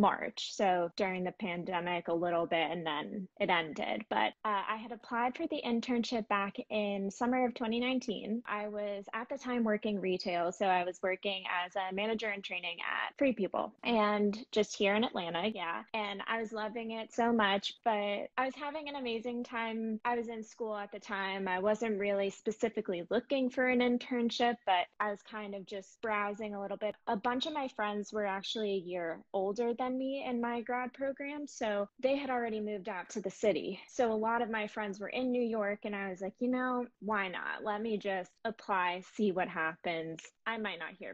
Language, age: English, 20-39